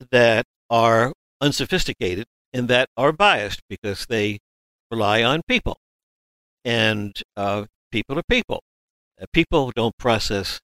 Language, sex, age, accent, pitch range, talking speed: English, male, 60-79, American, 105-135 Hz, 120 wpm